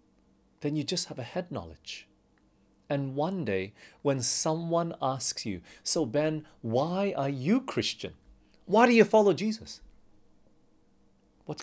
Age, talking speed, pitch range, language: 30-49, 135 wpm, 115-160 Hz, English